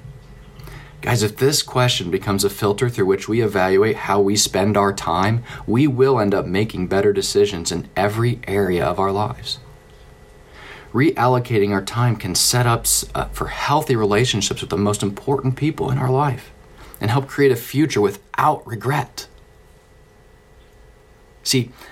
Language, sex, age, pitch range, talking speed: English, male, 40-59, 100-130 Hz, 150 wpm